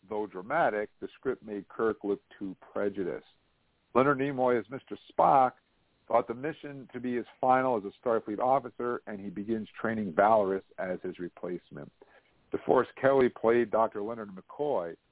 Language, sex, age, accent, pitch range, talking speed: English, male, 50-69, American, 100-125 Hz, 155 wpm